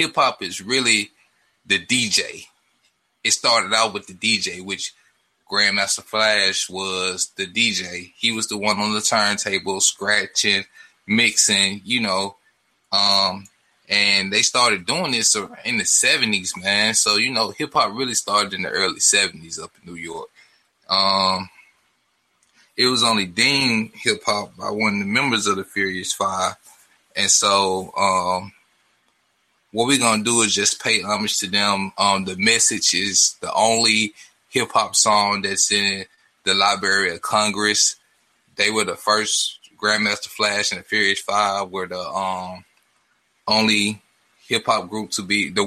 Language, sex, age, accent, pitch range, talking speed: English, male, 20-39, American, 95-110 Hz, 150 wpm